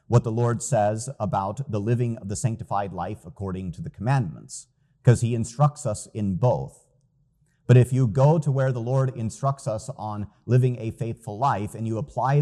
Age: 30-49